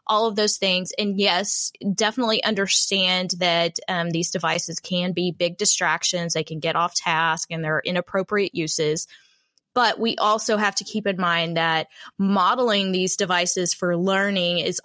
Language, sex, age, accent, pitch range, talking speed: English, female, 20-39, American, 170-205 Hz, 160 wpm